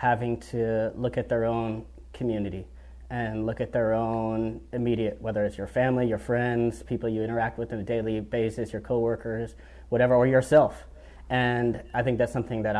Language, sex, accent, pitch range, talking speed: English, male, American, 110-130 Hz, 180 wpm